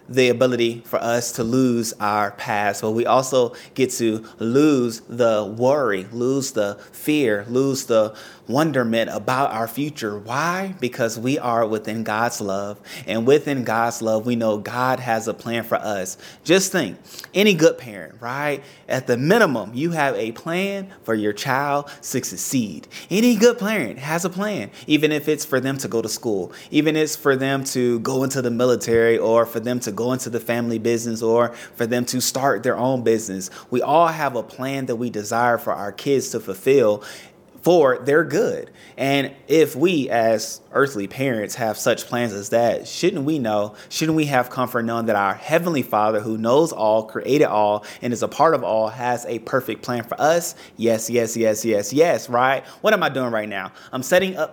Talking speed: 195 wpm